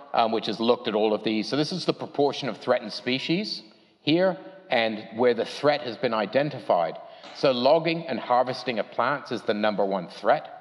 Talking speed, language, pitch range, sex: 200 wpm, English, 110-150 Hz, male